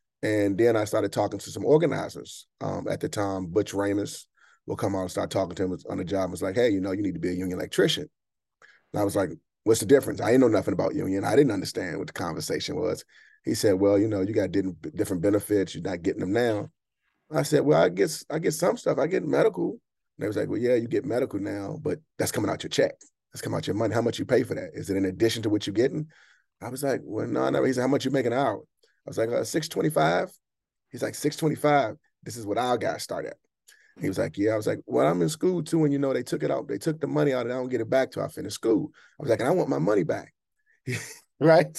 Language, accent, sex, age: English, American, male, 30-49